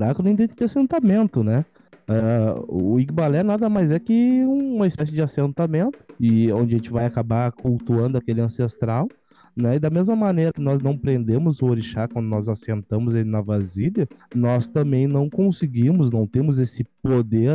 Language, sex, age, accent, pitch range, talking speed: Portuguese, male, 20-39, Brazilian, 120-150 Hz, 170 wpm